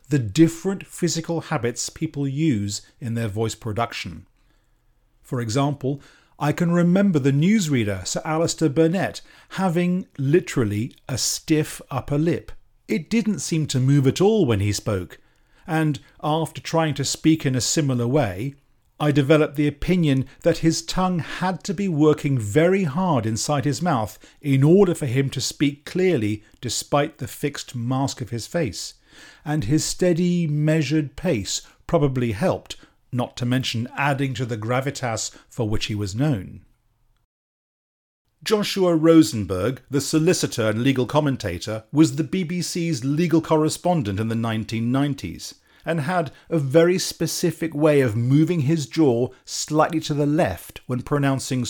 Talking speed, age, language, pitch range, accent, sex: 145 wpm, 40-59, English, 120-160 Hz, British, male